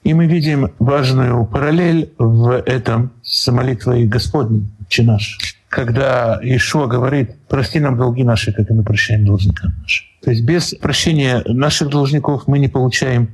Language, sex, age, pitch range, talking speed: Russian, male, 50-69, 115-155 Hz, 150 wpm